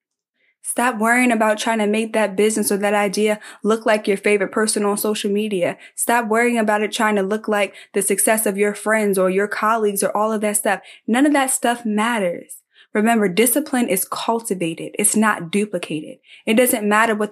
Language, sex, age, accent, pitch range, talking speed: English, female, 20-39, American, 190-215 Hz, 195 wpm